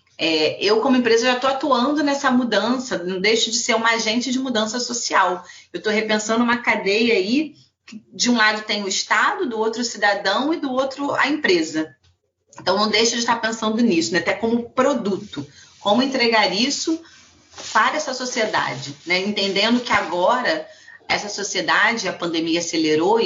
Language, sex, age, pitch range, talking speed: Portuguese, female, 30-49, 175-245 Hz, 170 wpm